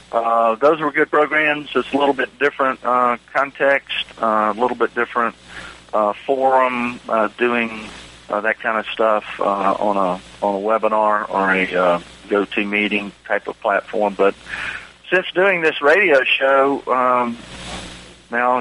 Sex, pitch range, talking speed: male, 105-120 Hz, 155 wpm